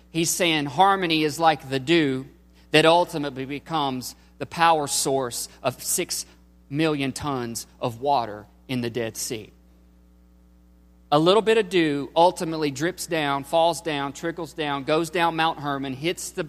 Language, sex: English, male